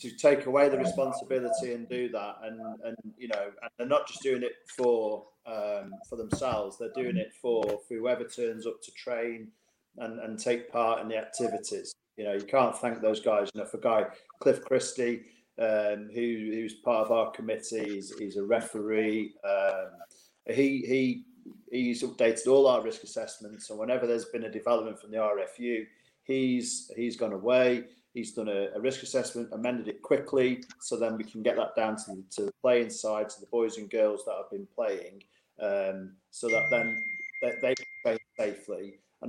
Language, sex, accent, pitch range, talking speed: English, male, British, 110-135 Hz, 190 wpm